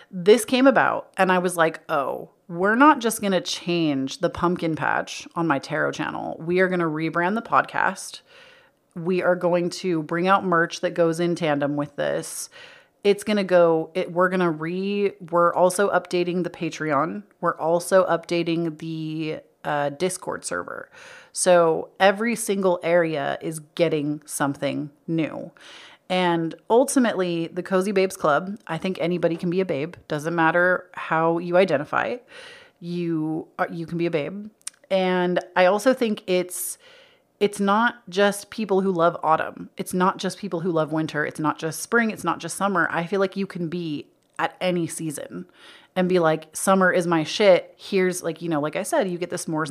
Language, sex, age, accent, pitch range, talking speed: English, female, 30-49, American, 165-200 Hz, 175 wpm